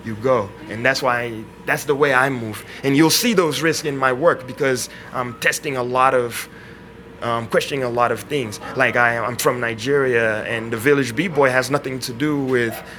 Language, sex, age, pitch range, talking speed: English, male, 20-39, 115-145 Hz, 205 wpm